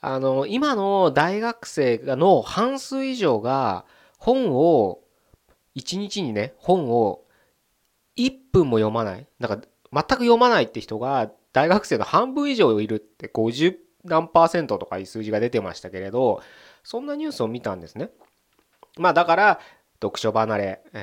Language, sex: Japanese, male